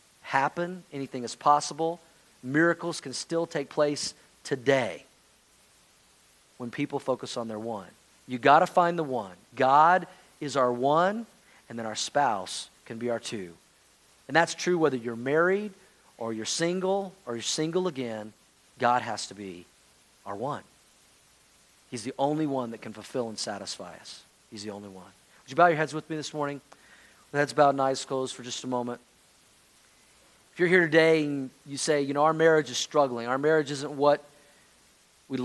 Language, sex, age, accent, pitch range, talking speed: English, male, 40-59, American, 125-165 Hz, 175 wpm